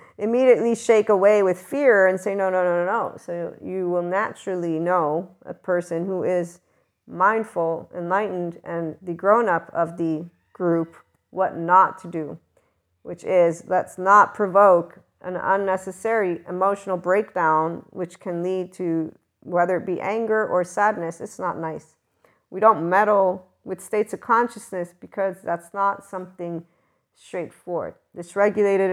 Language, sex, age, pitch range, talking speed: English, female, 40-59, 175-205 Hz, 140 wpm